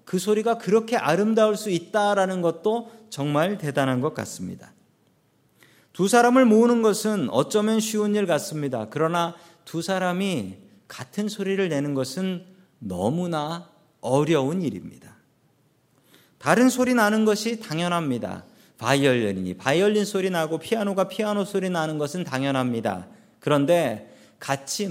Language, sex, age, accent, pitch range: Korean, male, 40-59, native, 145-210 Hz